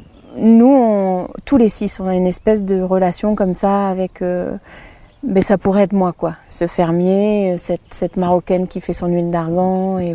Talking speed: 190 wpm